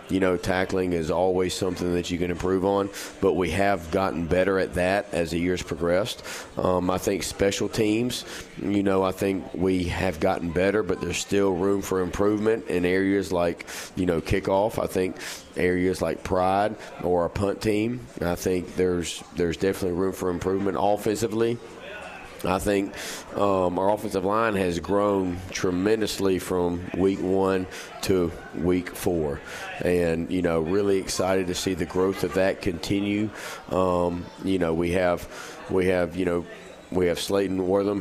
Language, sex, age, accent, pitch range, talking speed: English, male, 40-59, American, 90-100 Hz, 165 wpm